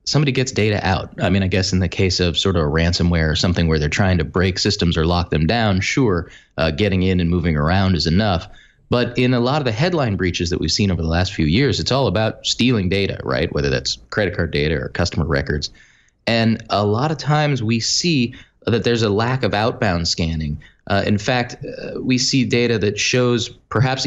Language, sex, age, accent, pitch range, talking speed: English, male, 20-39, American, 90-120 Hz, 225 wpm